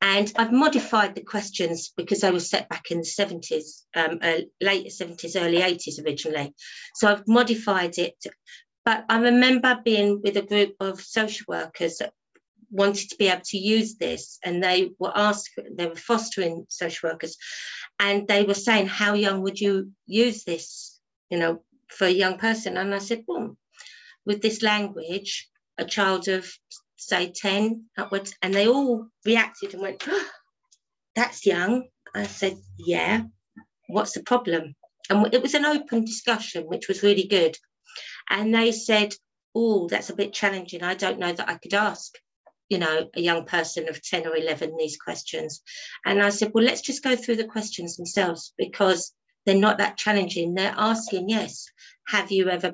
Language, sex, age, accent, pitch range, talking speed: English, female, 50-69, British, 170-215 Hz, 170 wpm